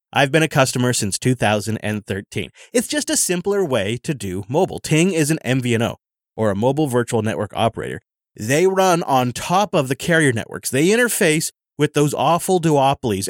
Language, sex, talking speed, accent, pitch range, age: English, male, 170 wpm, American, 115-150 Hz, 30-49